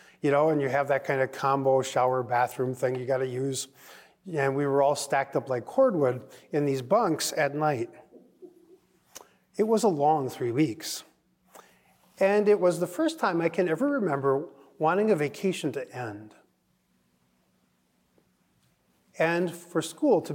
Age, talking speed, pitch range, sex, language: 40-59, 160 wpm, 130-180 Hz, male, English